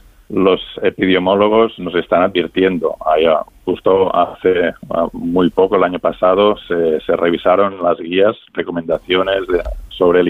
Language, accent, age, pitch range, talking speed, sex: Spanish, Spanish, 50-69, 85-100 Hz, 110 wpm, male